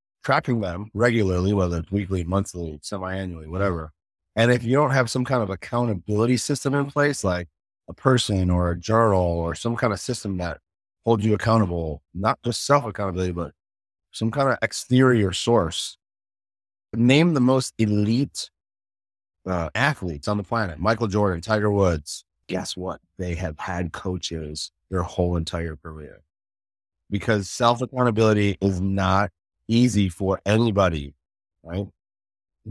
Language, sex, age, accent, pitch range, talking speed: English, male, 30-49, American, 90-115 Hz, 140 wpm